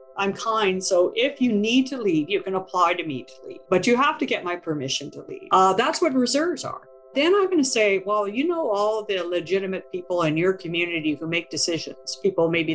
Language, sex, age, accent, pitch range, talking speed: English, female, 50-69, American, 165-245 Hz, 230 wpm